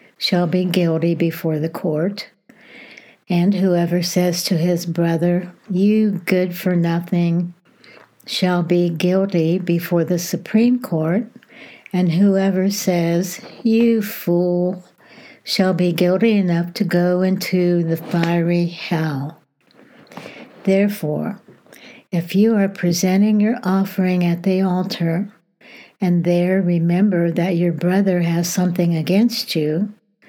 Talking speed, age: 115 wpm, 60-79